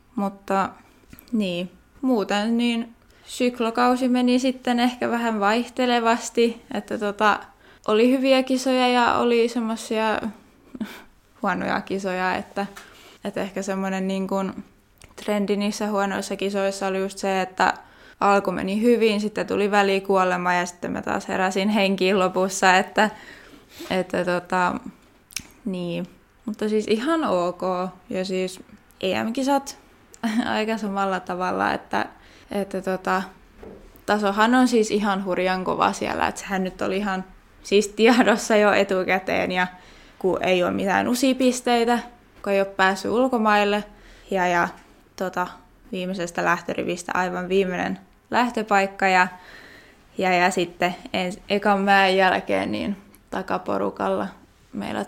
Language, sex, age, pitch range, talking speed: Finnish, female, 20-39, 185-230 Hz, 120 wpm